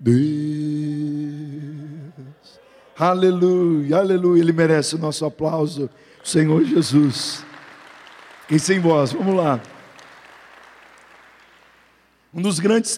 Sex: male